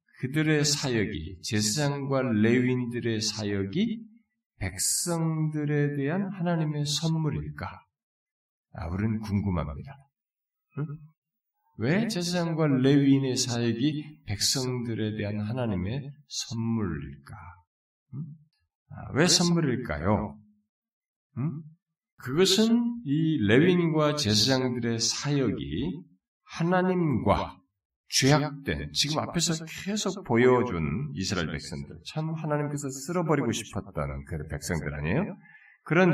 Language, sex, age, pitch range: Korean, male, 50-69, 105-165 Hz